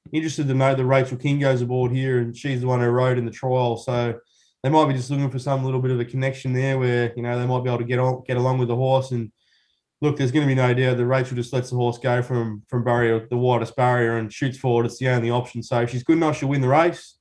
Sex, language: male, English